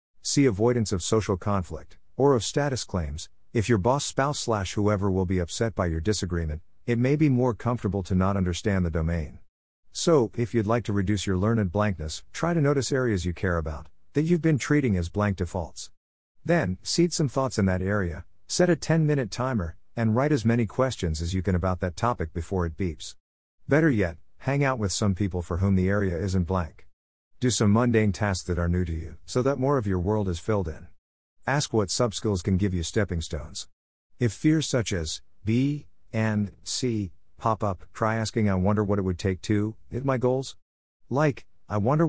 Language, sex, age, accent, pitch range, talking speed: English, male, 50-69, American, 90-125 Hz, 200 wpm